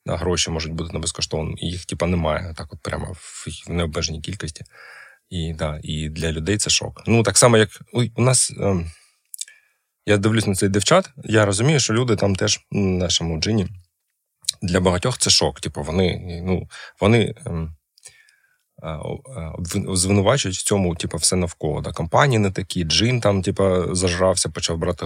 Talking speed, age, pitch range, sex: 180 wpm, 20-39, 85-105 Hz, male